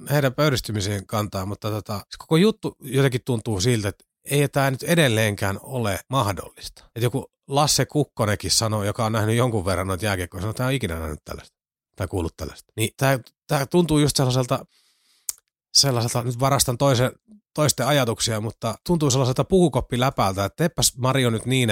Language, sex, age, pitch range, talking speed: Finnish, male, 30-49, 105-140 Hz, 165 wpm